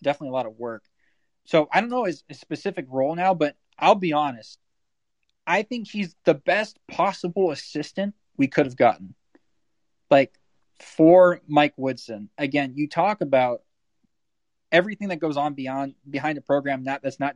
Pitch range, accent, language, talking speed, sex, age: 130-175 Hz, American, English, 165 wpm, male, 20-39